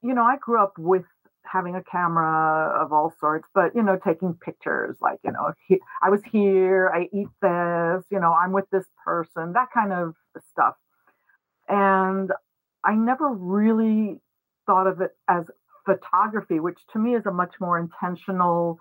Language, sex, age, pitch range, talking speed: English, female, 50-69, 170-205 Hz, 170 wpm